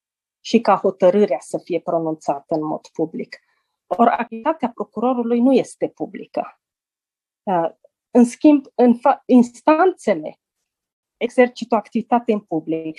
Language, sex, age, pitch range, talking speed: Romanian, female, 30-49, 195-275 Hz, 110 wpm